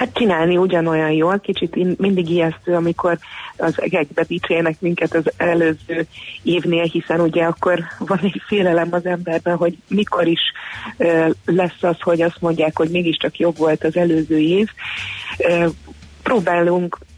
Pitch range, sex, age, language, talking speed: 160-175 Hz, female, 30-49, Hungarian, 135 wpm